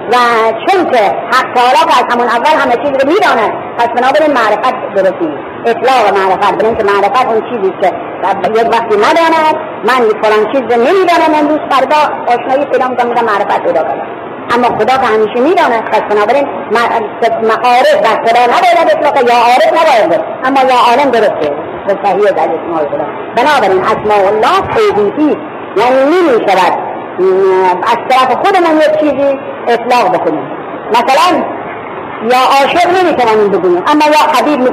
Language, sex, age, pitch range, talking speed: Persian, male, 50-69, 215-300 Hz, 150 wpm